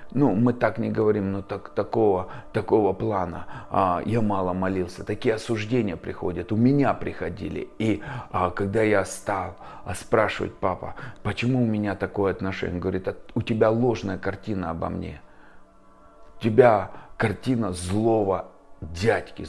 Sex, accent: male, native